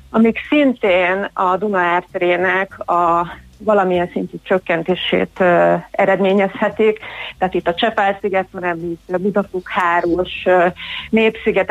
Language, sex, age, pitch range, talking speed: Hungarian, female, 30-49, 180-225 Hz, 90 wpm